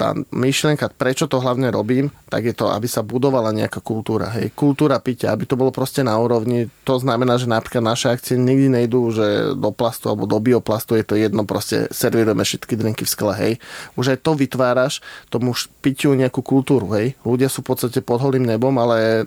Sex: male